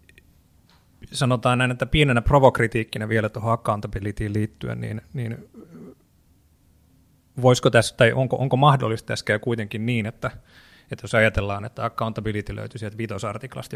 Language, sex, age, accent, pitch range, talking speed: Finnish, male, 30-49, native, 105-125 Hz, 120 wpm